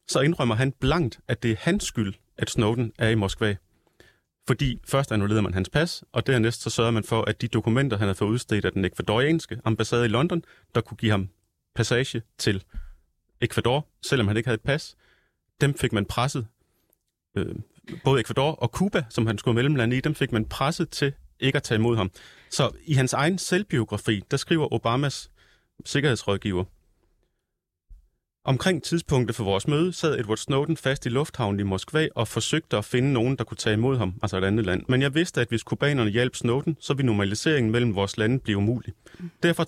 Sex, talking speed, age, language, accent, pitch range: male, 195 wpm, 30-49, Danish, native, 110-140 Hz